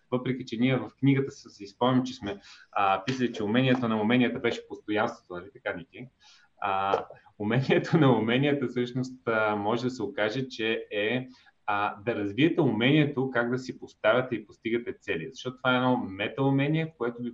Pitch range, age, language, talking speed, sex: 105-130 Hz, 30-49, Bulgarian, 160 wpm, male